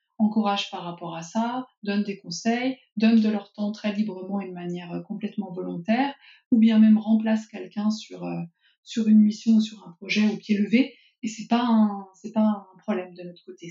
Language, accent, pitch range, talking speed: French, French, 200-225 Hz, 195 wpm